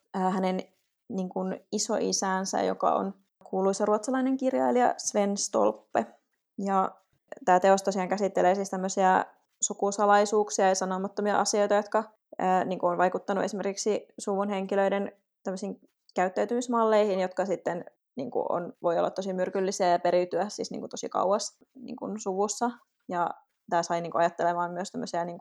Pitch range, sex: 185-215 Hz, female